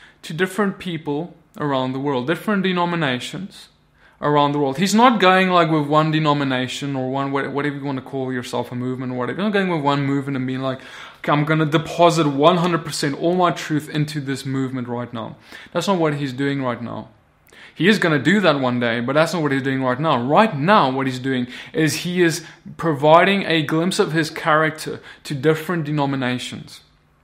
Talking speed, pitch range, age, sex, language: 205 wpm, 140-175 Hz, 20-39, male, English